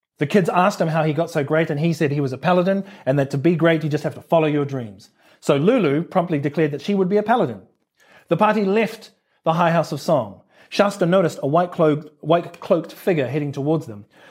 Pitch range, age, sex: 150-190 Hz, 30-49, male